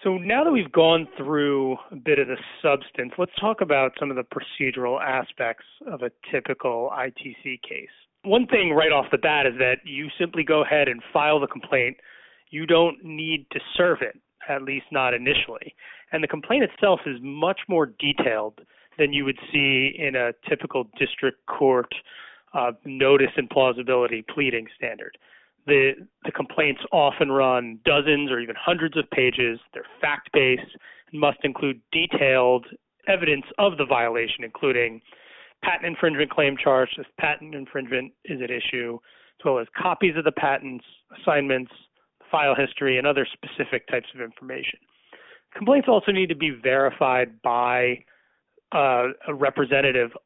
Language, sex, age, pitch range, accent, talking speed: English, male, 30-49, 130-165 Hz, American, 155 wpm